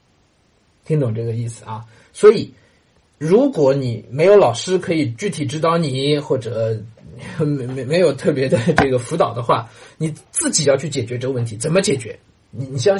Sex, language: male, Chinese